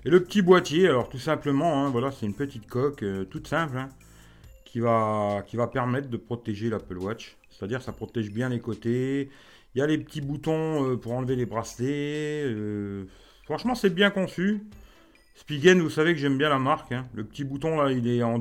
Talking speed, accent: 210 wpm, French